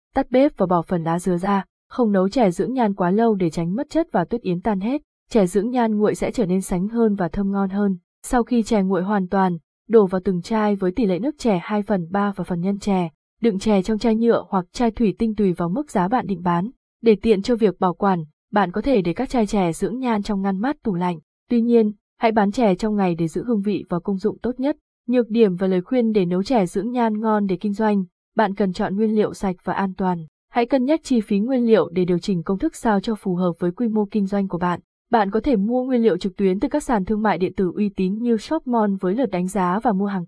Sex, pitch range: female, 185-235 Hz